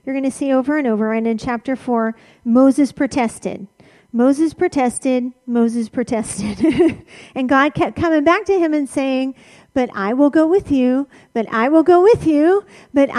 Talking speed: 180 wpm